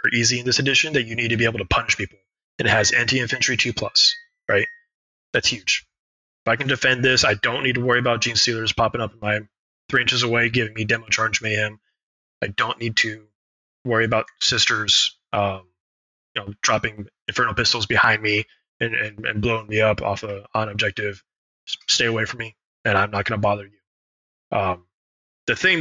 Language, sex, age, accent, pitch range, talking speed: English, male, 20-39, American, 100-125 Hz, 195 wpm